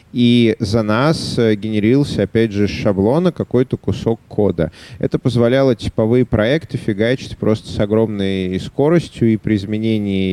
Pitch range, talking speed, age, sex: 110-135 Hz, 135 wpm, 30-49, male